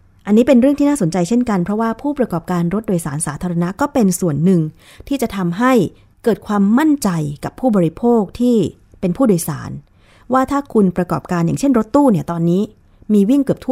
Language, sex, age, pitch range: Thai, female, 20-39, 165-235 Hz